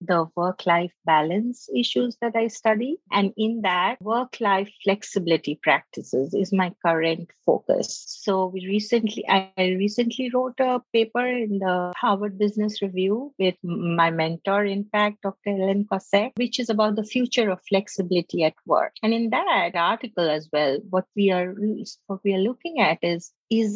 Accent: Indian